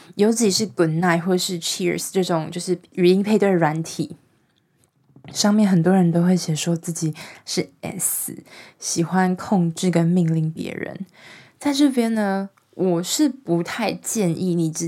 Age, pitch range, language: 20-39, 165-195 Hz, Chinese